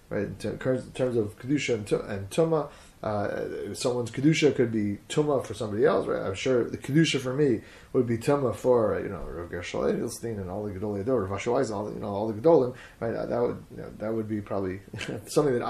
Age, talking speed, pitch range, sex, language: 30-49, 235 wpm, 100-130 Hz, male, English